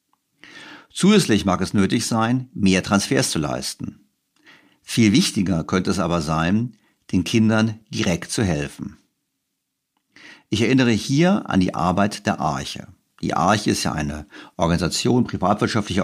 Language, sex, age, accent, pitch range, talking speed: German, male, 60-79, German, 85-110 Hz, 135 wpm